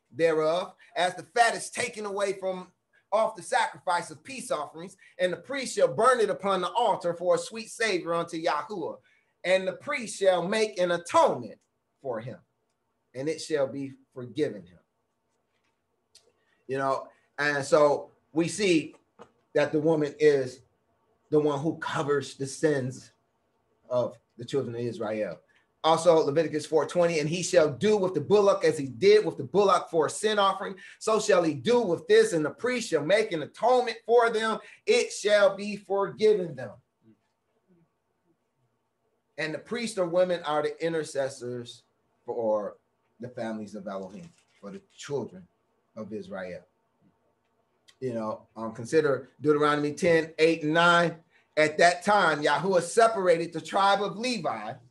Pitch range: 145-205 Hz